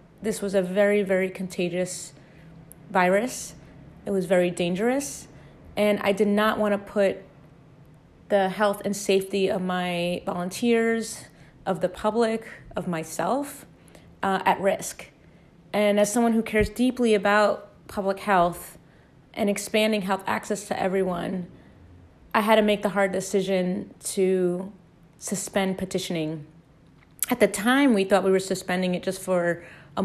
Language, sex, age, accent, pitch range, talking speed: English, female, 30-49, American, 180-205 Hz, 140 wpm